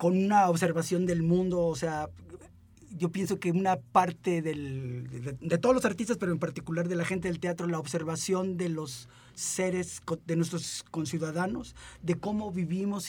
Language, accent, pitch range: Spanish, Mexican, 165-200 Hz